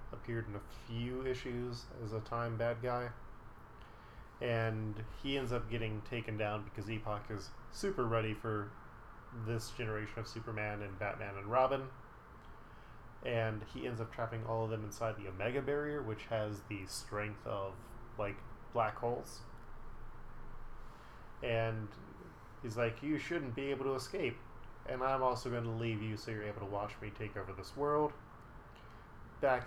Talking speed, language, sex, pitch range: 160 wpm, English, male, 105-120 Hz